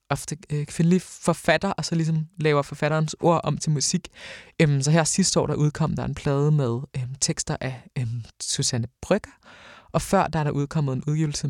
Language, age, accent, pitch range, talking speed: Danish, 20-39, native, 140-165 Hz, 185 wpm